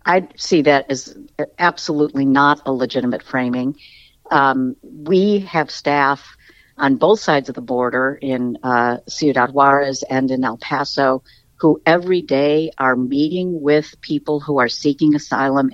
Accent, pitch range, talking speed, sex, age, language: American, 130-155 Hz, 145 wpm, female, 50-69, English